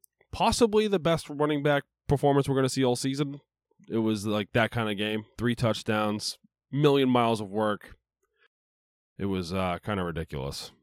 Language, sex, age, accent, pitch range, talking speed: English, male, 20-39, American, 95-135 Hz, 170 wpm